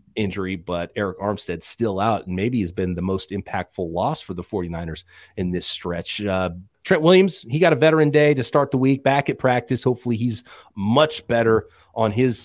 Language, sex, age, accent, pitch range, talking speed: English, male, 30-49, American, 95-125 Hz, 200 wpm